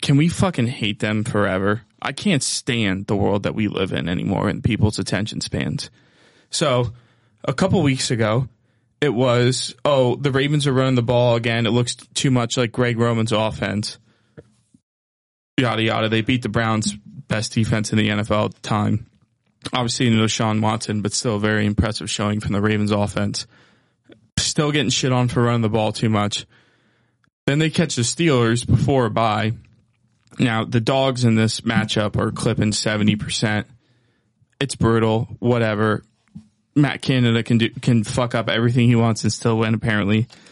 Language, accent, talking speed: English, American, 170 wpm